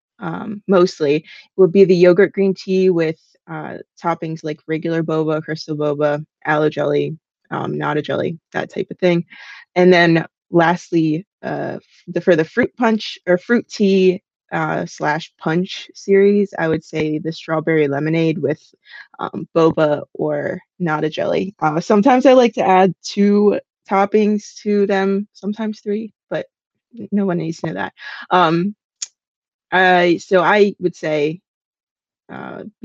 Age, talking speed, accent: 20-39, 145 wpm, American